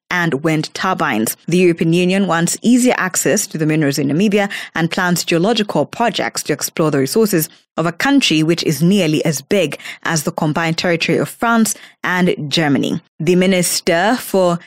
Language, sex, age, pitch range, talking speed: English, female, 20-39, 155-185 Hz, 170 wpm